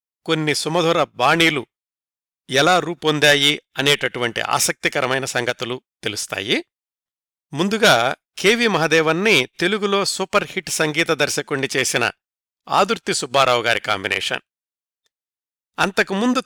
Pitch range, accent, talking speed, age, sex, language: 140-190 Hz, native, 85 wpm, 50-69, male, Telugu